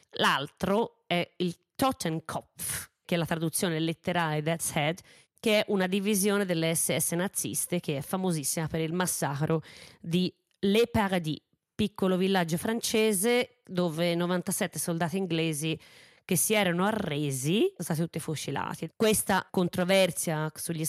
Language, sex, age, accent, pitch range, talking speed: Italian, female, 30-49, native, 155-185 Hz, 130 wpm